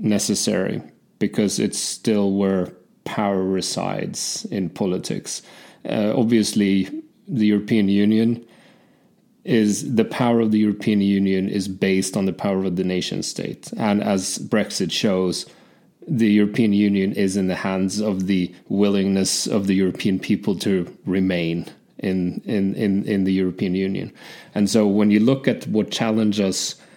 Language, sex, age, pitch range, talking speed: English, male, 30-49, 95-110 Hz, 145 wpm